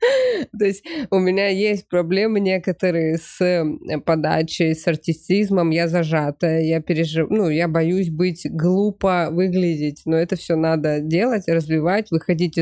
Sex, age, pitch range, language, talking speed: female, 20-39, 165-195 Hz, Russian, 135 wpm